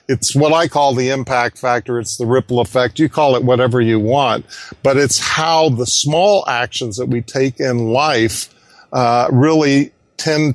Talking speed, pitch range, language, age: 175 wpm, 120-140 Hz, English, 50-69